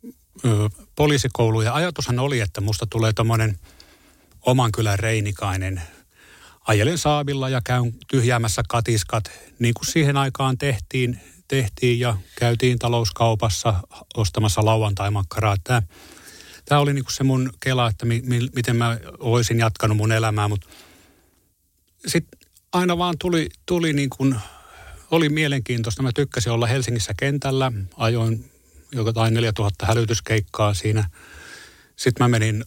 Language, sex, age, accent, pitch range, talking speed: Finnish, male, 30-49, native, 100-125 Hz, 120 wpm